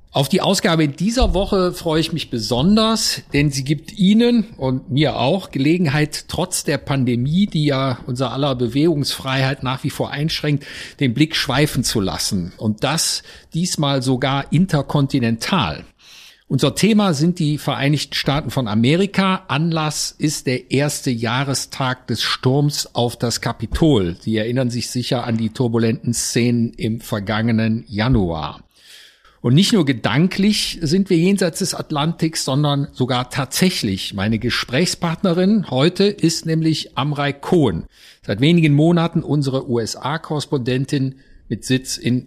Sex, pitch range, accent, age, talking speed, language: male, 125-160 Hz, German, 50-69, 135 wpm, German